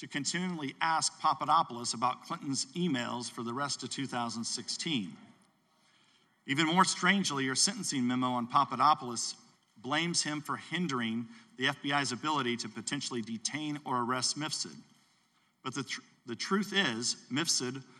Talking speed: 135 wpm